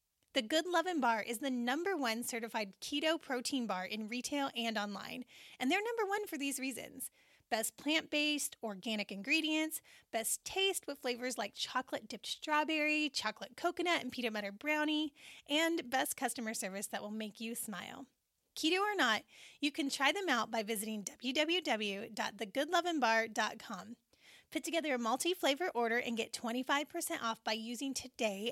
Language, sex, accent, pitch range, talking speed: English, female, American, 225-310 Hz, 150 wpm